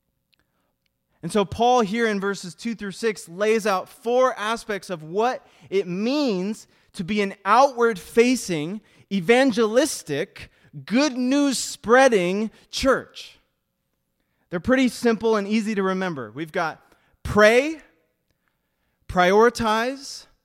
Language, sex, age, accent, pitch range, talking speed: English, male, 20-39, American, 145-225 Hz, 105 wpm